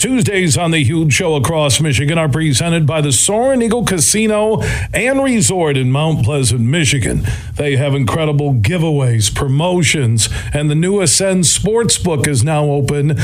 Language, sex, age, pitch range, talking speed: English, male, 50-69, 130-185 Hz, 150 wpm